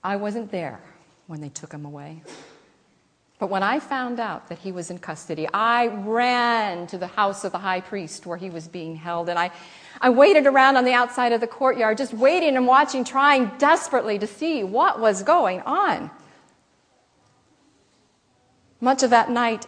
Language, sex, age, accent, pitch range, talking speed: English, female, 40-59, American, 165-230 Hz, 180 wpm